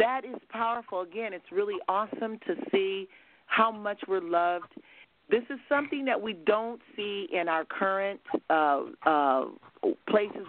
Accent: American